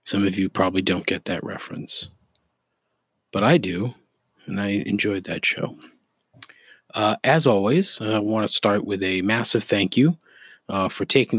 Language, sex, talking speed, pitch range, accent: English, male, 165 wpm, 100-120 Hz, American